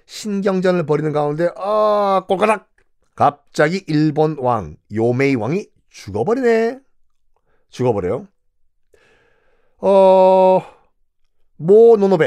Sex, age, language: male, 40-59, Korean